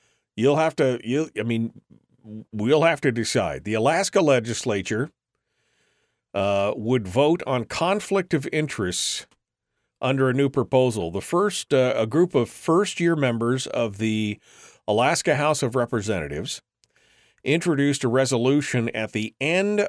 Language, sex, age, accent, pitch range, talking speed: English, male, 40-59, American, 100-135 Hz, 135 wpm